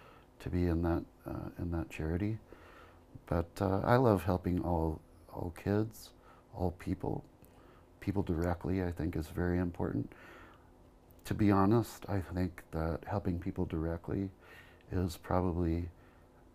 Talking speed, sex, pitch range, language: 130 wpm, male, 85-95 Hz, English